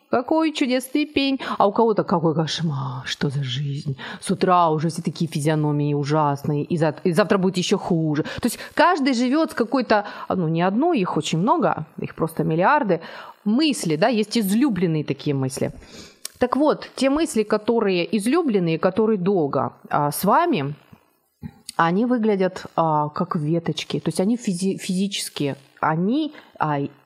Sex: female